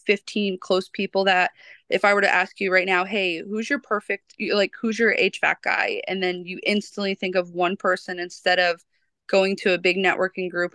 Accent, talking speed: American, 205 wpm